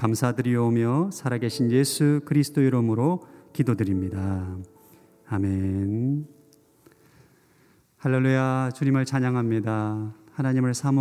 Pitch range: 110-135 Hz